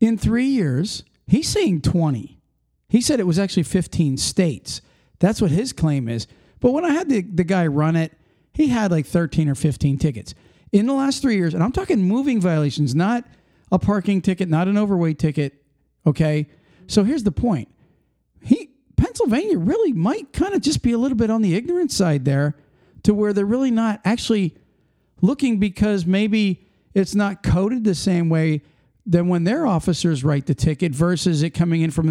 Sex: male